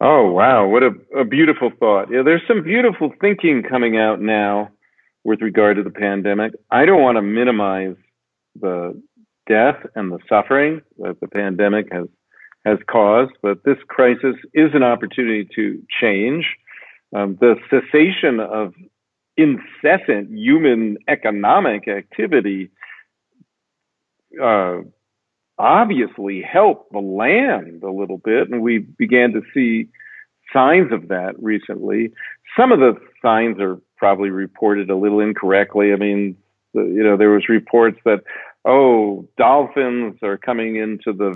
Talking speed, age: 135 wpm, 50-69